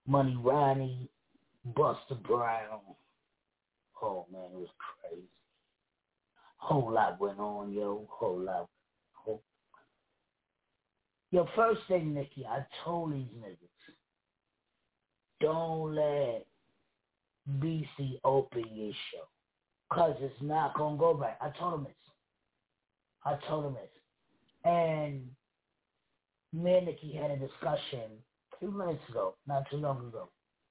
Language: English